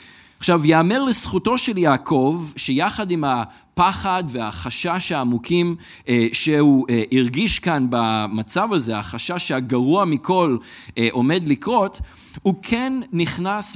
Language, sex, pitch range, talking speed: Hebrew, male, 125-175 Hz, 100 wpm